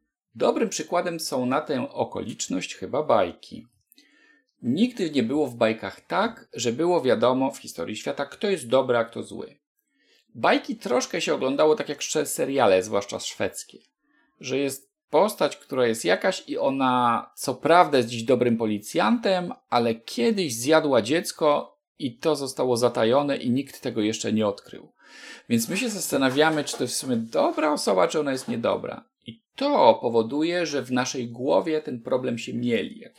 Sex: male